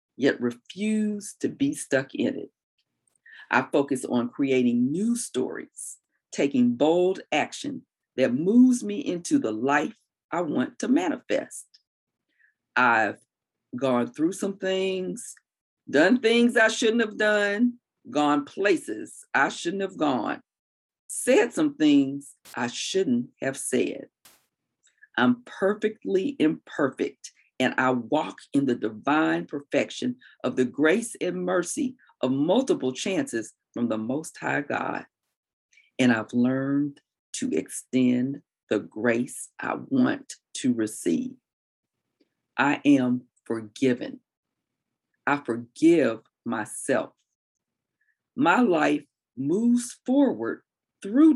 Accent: American